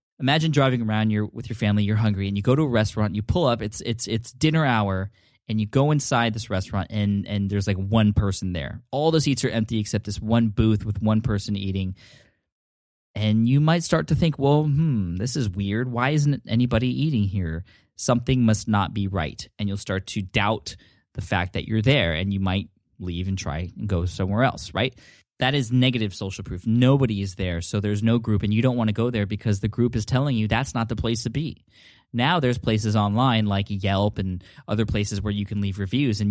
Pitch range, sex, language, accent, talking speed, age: 100-120 Hz, male, English, American, 225 wpm, 10-29